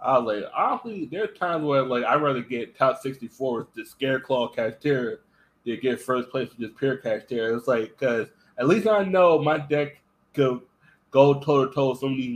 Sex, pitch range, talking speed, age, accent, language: male, 115-145 Hz, 220 wpm, 20-39, American, English